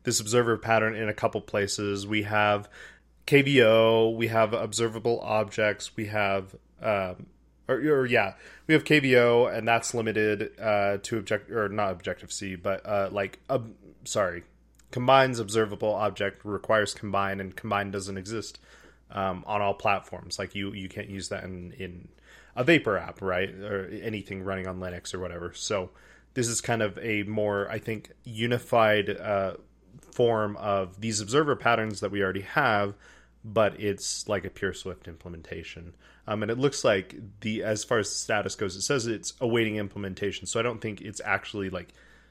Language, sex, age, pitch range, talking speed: English, male, 20-39, 95-115 Hz, 170 wpm